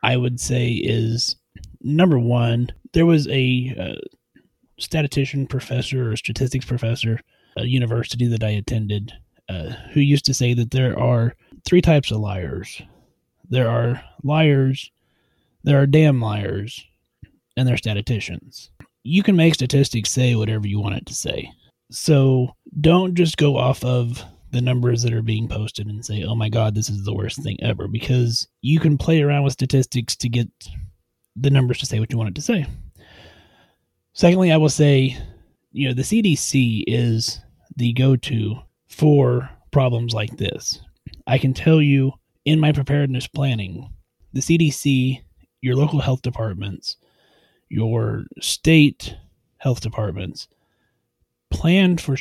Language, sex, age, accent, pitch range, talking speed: English, male, 30-49, American, 110-140 Hz, 155 wpm